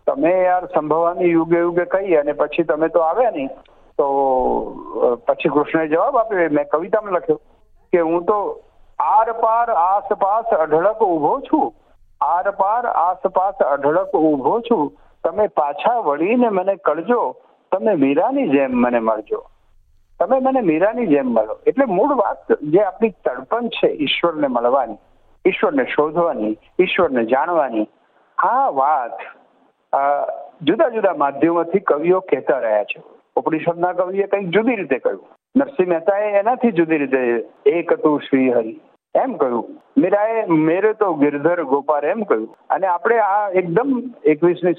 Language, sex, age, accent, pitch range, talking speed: Gujarati, male, 60-79, native, 155-235 Hz, 80 wpm